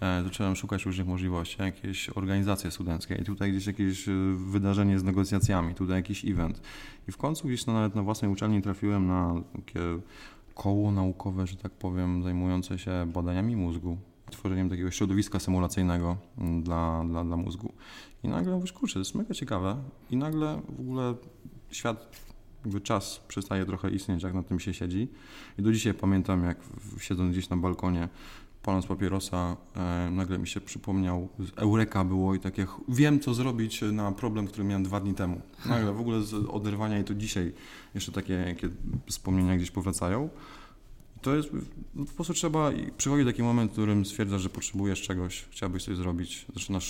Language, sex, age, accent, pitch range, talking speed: Polish, male, 20-39, native, 90-105 Hz, 170 wpm